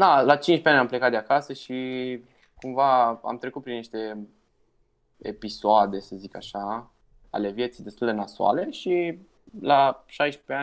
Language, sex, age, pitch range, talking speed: Romanian, male, 20-39, 100-125 Hz, 145 wpm